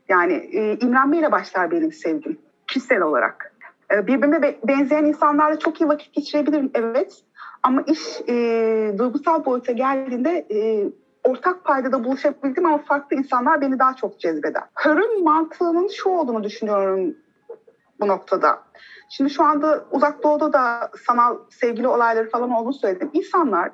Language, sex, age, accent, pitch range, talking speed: Turkish, female, 30-49, native, 250-320 Hz, 135 wpm